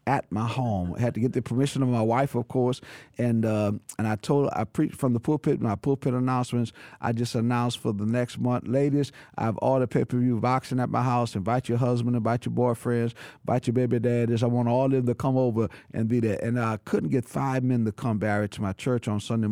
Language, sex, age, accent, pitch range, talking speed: English, male, 50-69, American, 110-130 Hz, 255 wpm